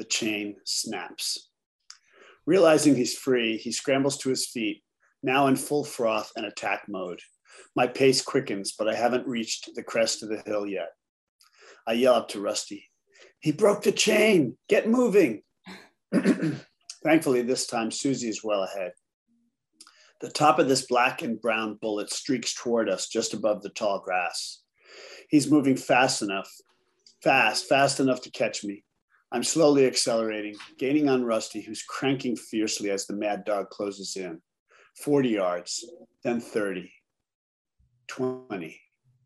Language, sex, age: English, male, 40-59